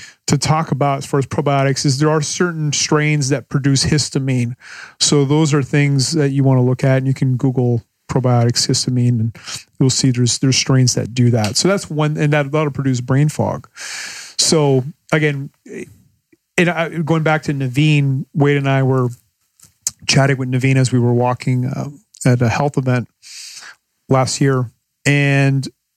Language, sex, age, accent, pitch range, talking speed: English, male, 40-59, American, 130-150 Hz, 175 wpm